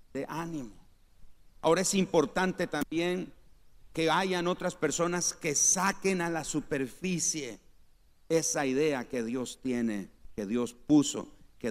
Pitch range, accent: 115-165 Hz, Mexican